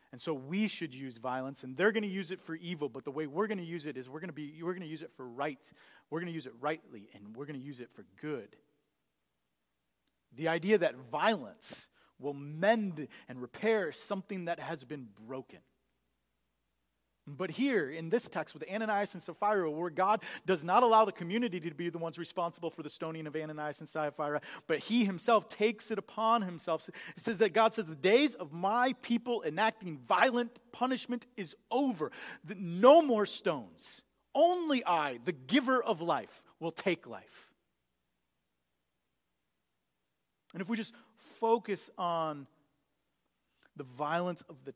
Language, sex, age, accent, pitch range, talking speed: English, male, 40-59, American, 145-195 Hz, 180 wpm